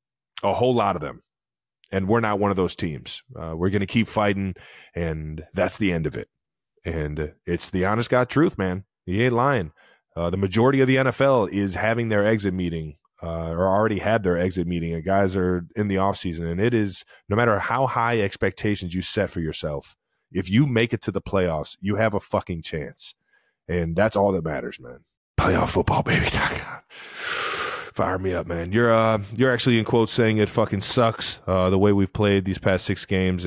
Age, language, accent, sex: 20-39, English, American, male